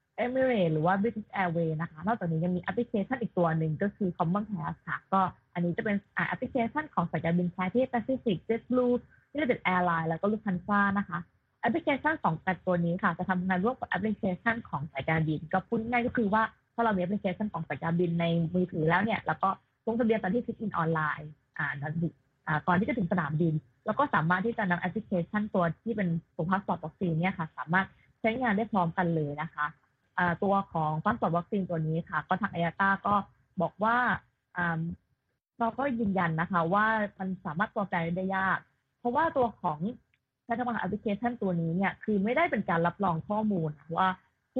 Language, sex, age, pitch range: Thai, female, 20-39, 170-225 Hz